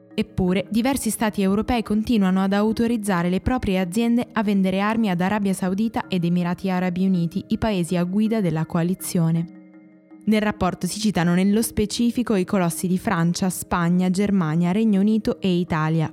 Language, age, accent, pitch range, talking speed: Italian, 20-39, native, 170-215 Hz, 155 wpm